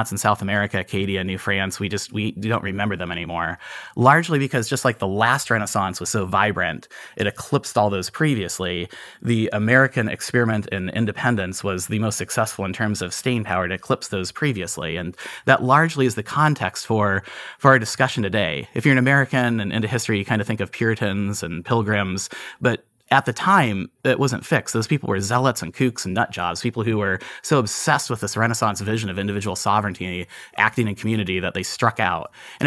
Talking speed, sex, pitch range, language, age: 195 wpm, male, 100-125 Hz, English, 30-49